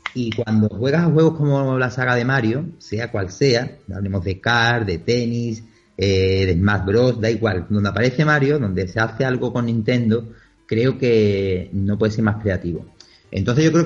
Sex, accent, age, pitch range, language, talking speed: male, Spanish, 30-49, 100-125 Hz, Spanish, 185 wpm